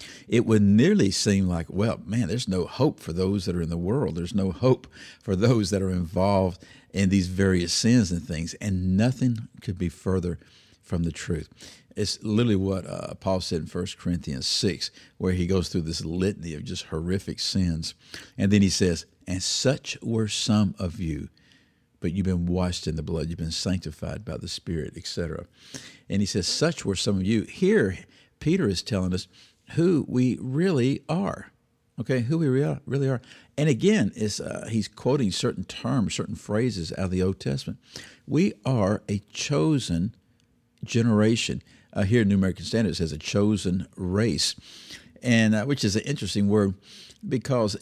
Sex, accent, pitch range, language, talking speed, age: male, American, 90-115 Hz, English, 180 wpm, 50-69